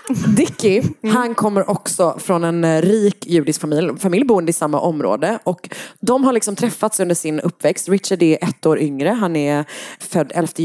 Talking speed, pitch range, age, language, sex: 170 wpm, 150-210 Hz, 30-49, Swedish, female